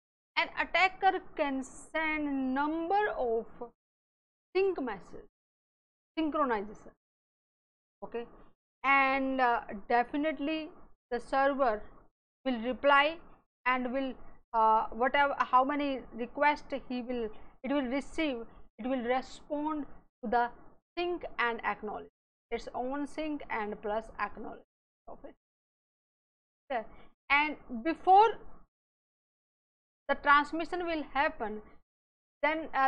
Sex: female